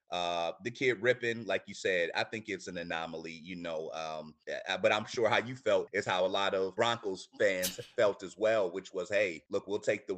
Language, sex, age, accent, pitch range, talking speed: English, male, 30-49, American, 90-110 Hz, 225 wpm